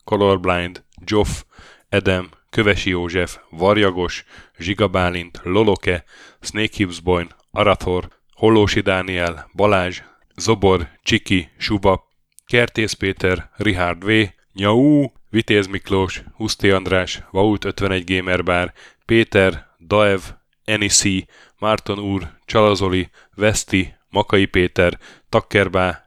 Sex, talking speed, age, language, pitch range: male, 90 wpm, 10-29, Hungarian, 90-105 Hz